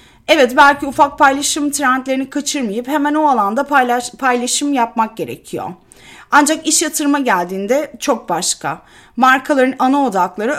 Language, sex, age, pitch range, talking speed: Turkish, female, 30-49, 225-290 Hz, 125 wpm